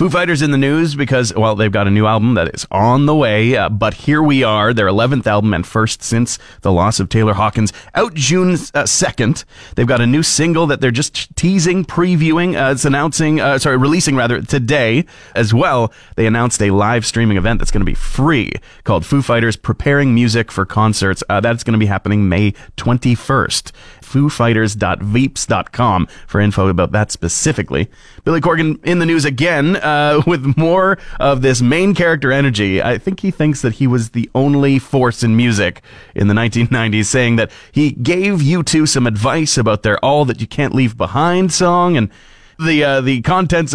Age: 30-49